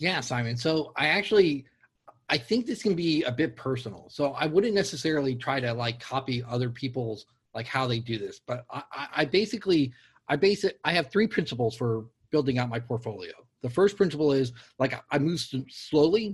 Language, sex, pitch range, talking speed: English, male, 125-165 Hz, 190 wpm